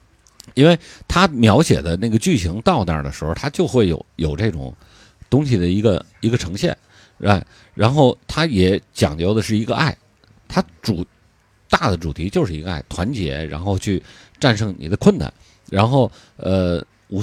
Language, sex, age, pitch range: Chinese, male, 50-69, 90-130 Hz